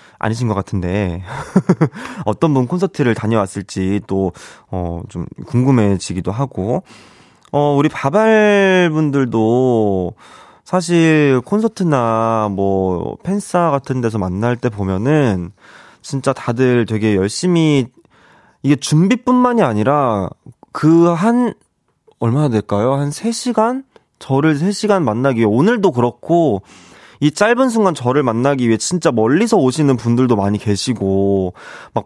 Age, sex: 20-39, male